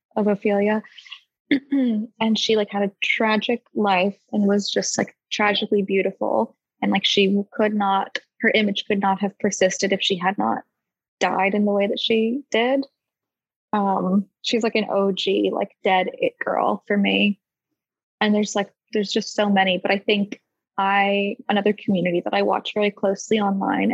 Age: 20-39